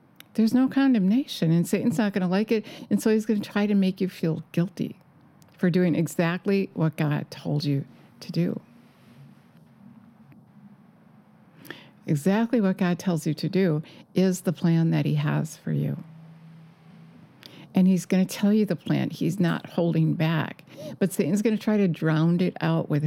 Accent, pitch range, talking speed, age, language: American, 160-200 Hz, 175 wpm, 60-79, English